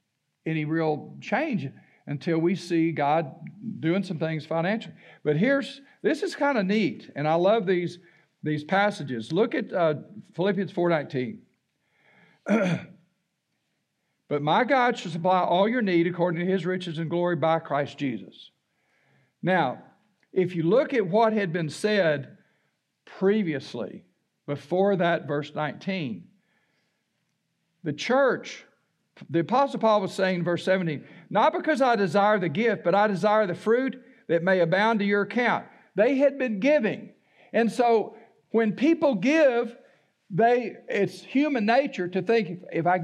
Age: 60-79